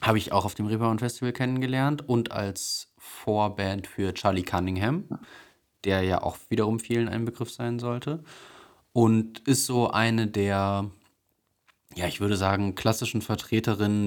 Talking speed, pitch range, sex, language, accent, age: 145 wpm, 95-110 Hz, male, German, German, 20-39